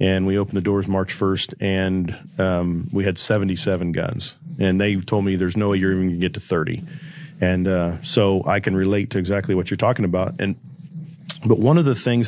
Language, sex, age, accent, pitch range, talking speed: English, male, 40-59, American, 95-120 Hz, 220 wpm